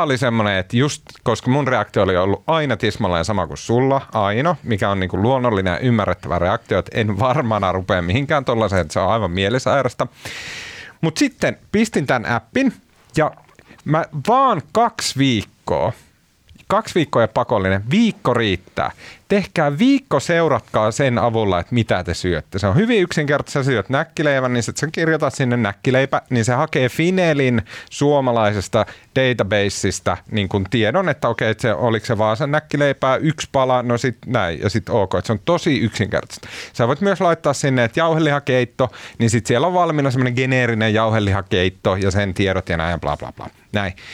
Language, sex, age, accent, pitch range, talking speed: Finnish, male, 30-49, native, 105-145 Hz, 170 wpm